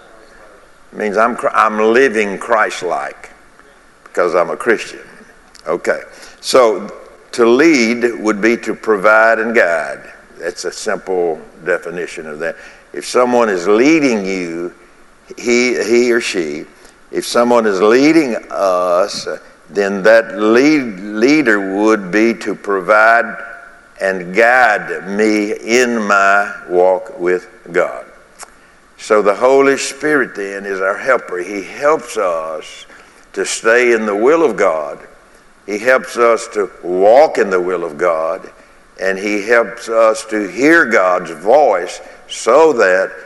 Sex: male